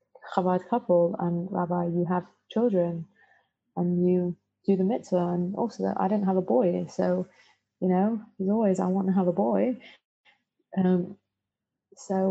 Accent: British